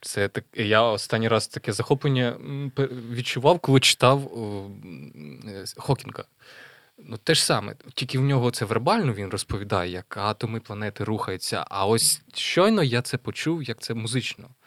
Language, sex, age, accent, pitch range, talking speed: Ukrainian, male, 20-39, native, 110-135 Hz, 145 wpm